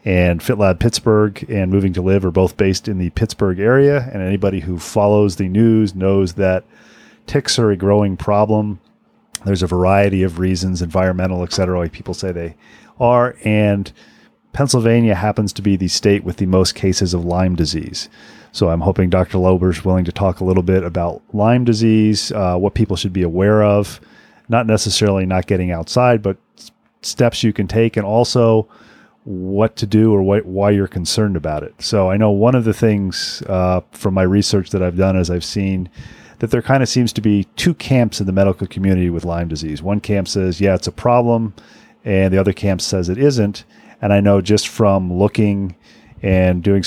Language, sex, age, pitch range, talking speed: English, male, 40-59, 95-105 Hz, 195 wpm